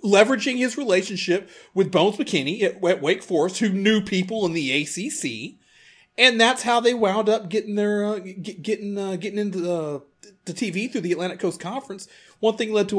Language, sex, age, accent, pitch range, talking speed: English, male, 30-49, American, 180-230 Hz, 195 wpm